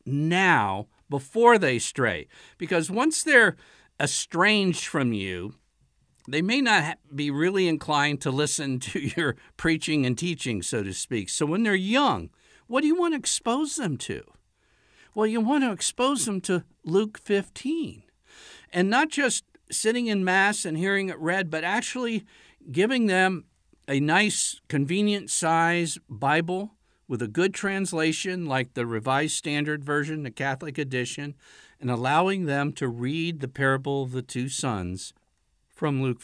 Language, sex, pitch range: English, male, 135-205 Hz